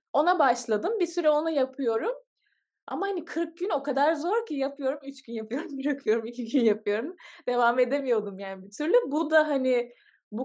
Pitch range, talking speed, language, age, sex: 205-280 Hz, 180 wpm, Turkish, 20-39, female